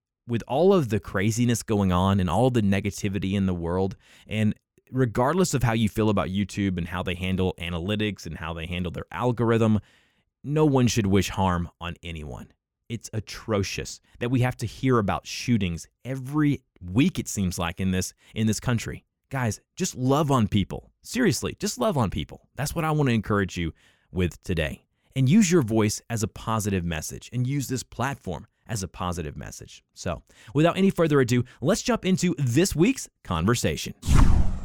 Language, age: English, 20-39